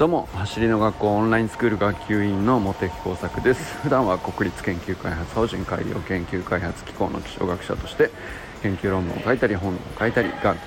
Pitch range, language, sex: 95-115 Hz, Japanese, male